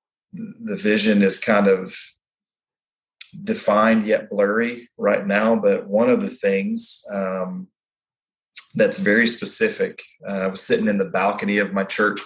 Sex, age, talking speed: male, 30-49, 140 wpm